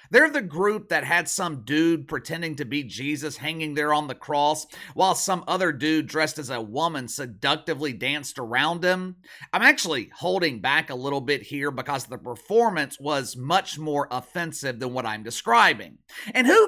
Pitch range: 140-180 Hz